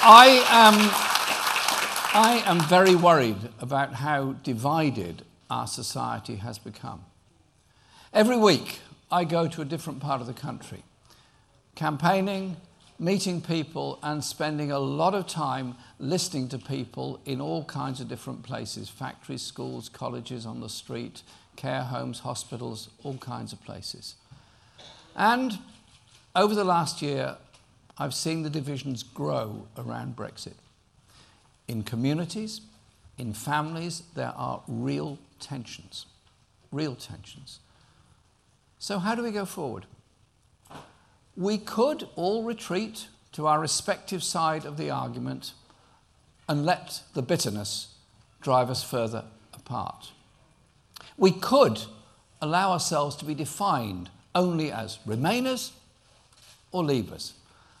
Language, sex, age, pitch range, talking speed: English, male, 50-69, 115-175 Hz, 120 wpm